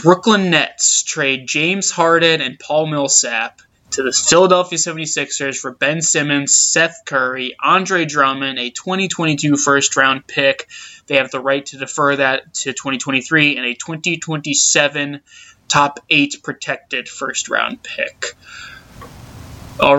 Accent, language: American, English